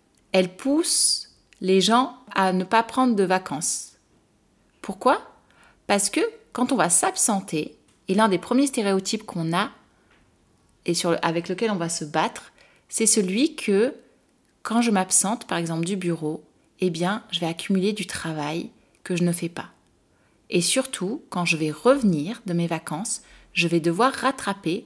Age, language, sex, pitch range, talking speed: 30-49, French, female, 170-230 Hz, 165 wpm